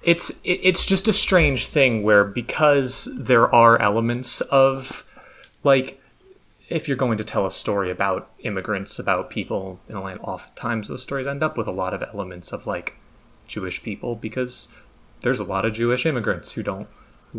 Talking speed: 175 wpm